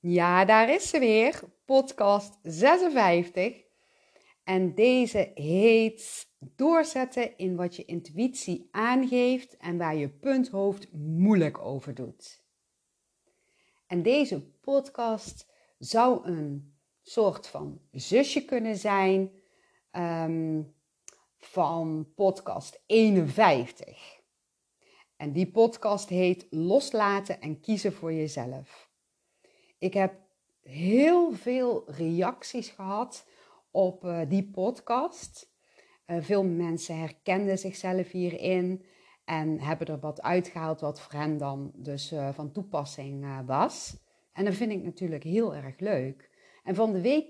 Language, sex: Dutch, female